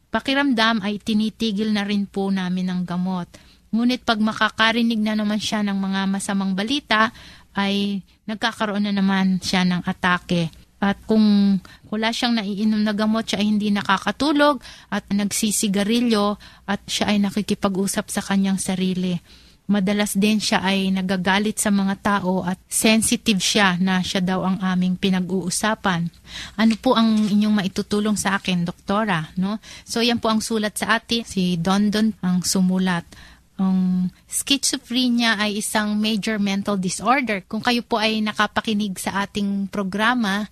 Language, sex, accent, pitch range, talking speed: Filipino, female, native, 190-220 Hz, 145 wpm